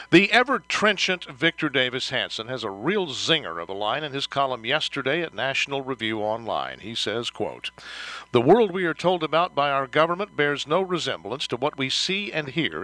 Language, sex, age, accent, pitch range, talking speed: English, male, 60-79, American, 135-180 Hz, 190 wpm